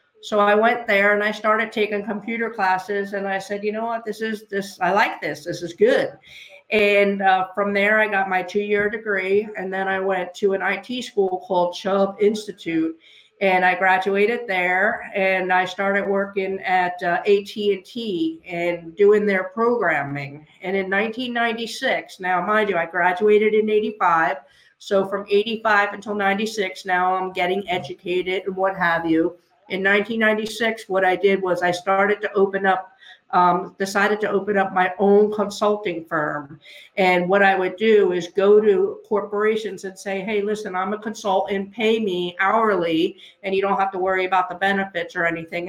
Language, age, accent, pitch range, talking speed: English, 50-69, American, 185-210 Hz, 175 wpm